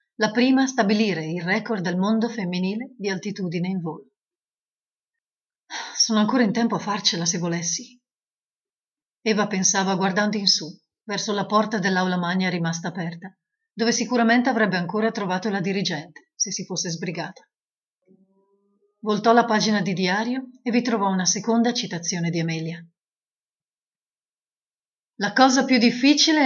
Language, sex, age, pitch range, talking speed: Italian, female, 30-49, 180-225 Hz, 140 wpm